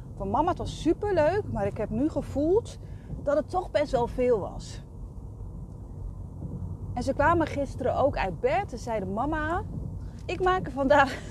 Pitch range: 235-320 Hz